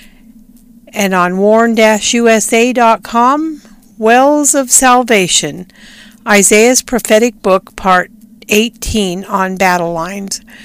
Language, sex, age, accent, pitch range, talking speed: English, female, 50-69, American, 200-245 Hz, 85 wpm